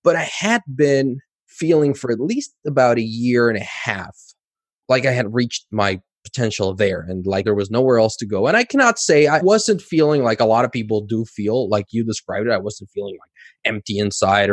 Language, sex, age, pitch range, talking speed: English, male, 20-39, 105-140 Hz, 220 wpm